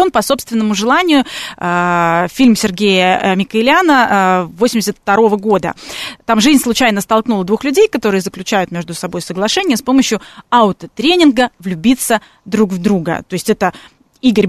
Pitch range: 205-280 Hz